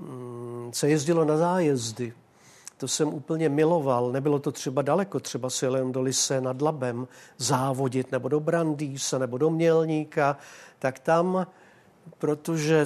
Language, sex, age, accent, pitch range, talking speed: Czech, male, 50-69, native, 130-160 Hz, 130 wpm